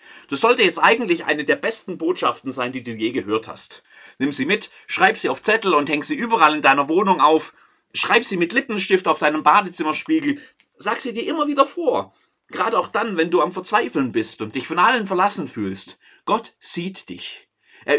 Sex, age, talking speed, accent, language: male, 30-49, 200 wpm, German, German